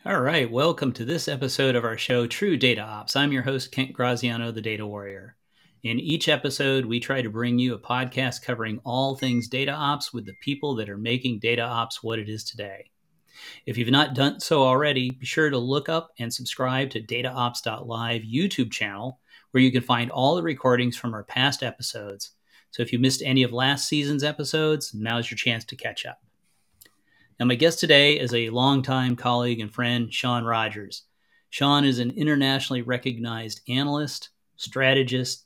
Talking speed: 185 wpm